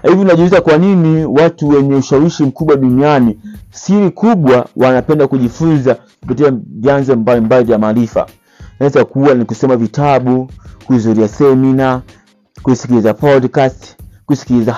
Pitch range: 120-145 Hz